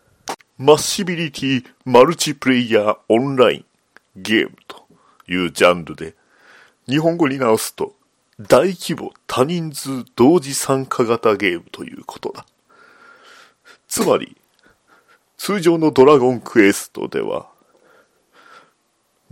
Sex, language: male, Japanese